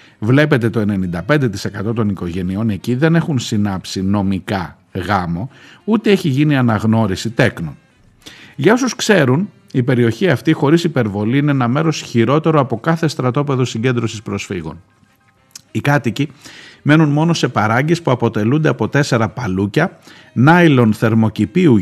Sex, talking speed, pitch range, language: male, 125 wpm, 105-150 Hz, Greek